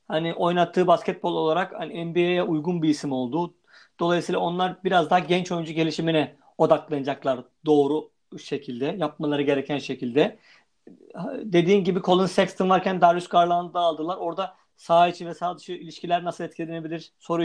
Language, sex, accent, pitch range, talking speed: Turkish, male, native, 155-185 Hz, 145 wpm